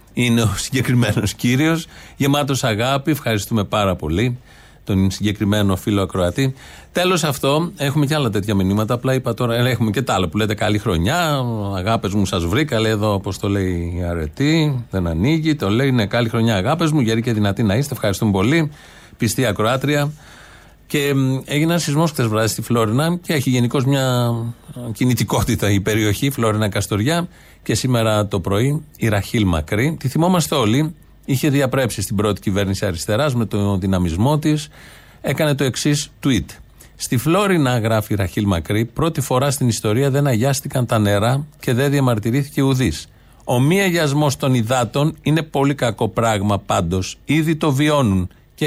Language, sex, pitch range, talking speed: Greek, male, 105-145 Hz, 160 wpm